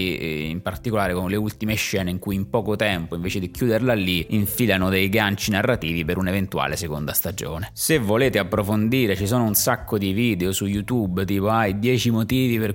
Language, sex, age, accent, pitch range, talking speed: Italian, male, 20-39, native, 95-115 Hz, 190 wpm